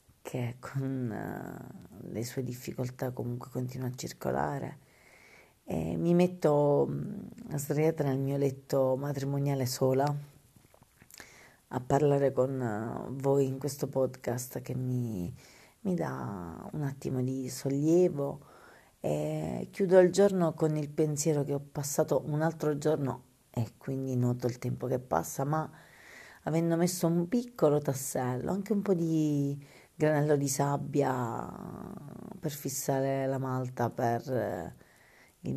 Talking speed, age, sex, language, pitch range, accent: 120 wpm, 40-59, female, Italian, 125-150 Hz, native